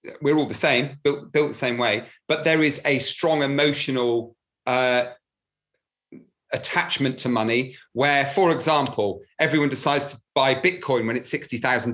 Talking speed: 155 wpm